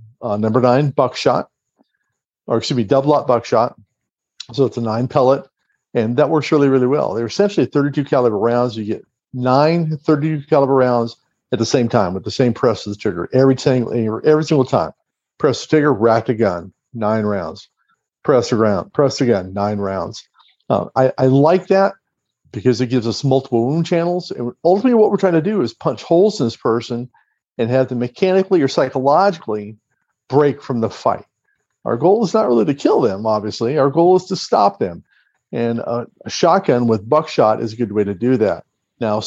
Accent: American